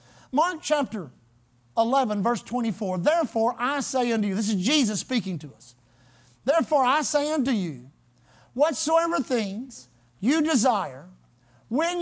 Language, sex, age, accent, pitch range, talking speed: English, male, 50-69, American, 215-300 Hz, 130 wpm